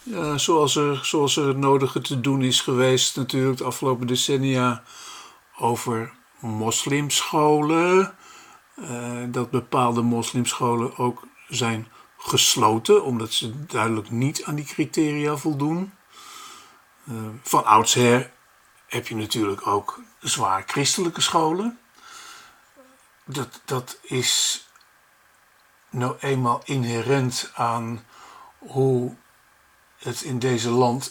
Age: 50-69